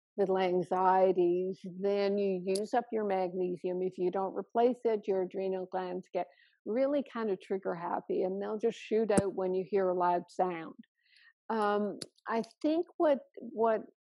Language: English